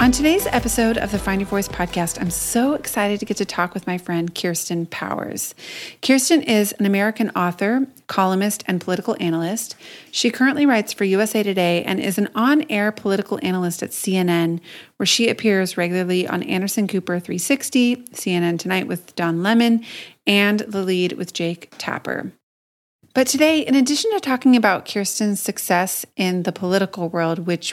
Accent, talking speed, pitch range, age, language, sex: American, 165 wpm, 175-215 Hz, 30-49, English, female